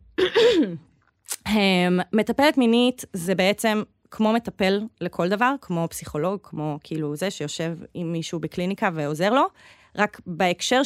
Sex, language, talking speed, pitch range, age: female, Hebrew, 115 wpm, 175-225 Hz, 20-39